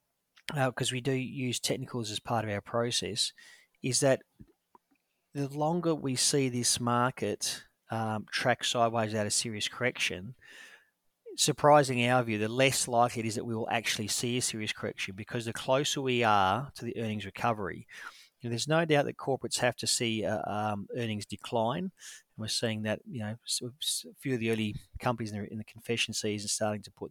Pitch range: 110-130 Hz